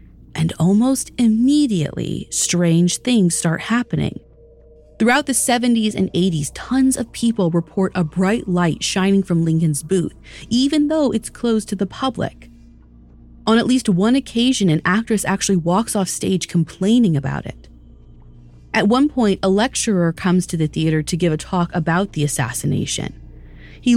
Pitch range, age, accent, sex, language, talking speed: 160-240 Hz, 30-49, American, female, English, 155 wpm